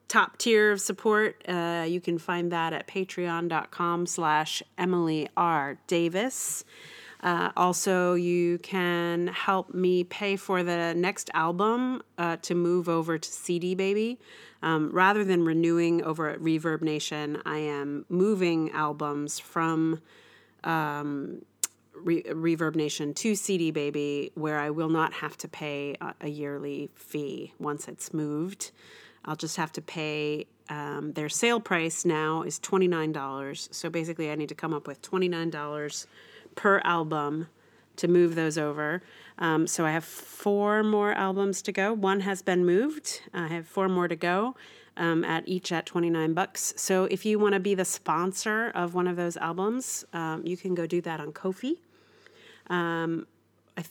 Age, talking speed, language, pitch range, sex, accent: 40-59, 155 wpm, English, 155-190 Hz, female, American